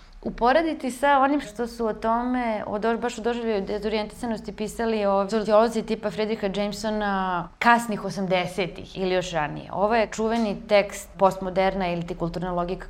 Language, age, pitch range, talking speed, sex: English, 20-39, 185-235 Hz, 145 wpm, female